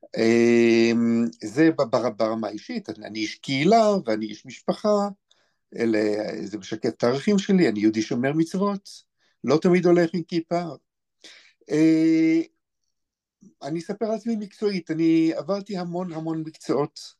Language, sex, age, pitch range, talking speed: Hebrew, male, 50-69, 125-175 Hz, 120 wpm